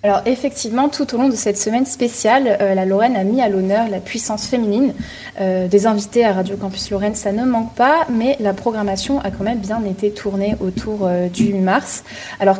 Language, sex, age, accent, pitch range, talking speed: French, female, 20-39, French, 200-240 Hz, 210 wpm